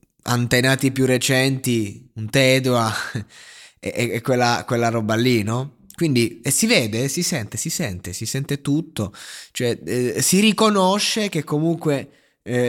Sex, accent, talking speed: male, native, 140 wpm